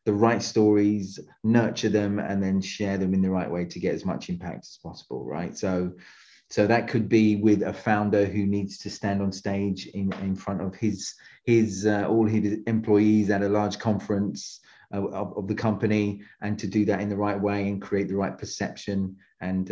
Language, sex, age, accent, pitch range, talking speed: English, male, 30-49, British, 100-115 Hz, 205 wpm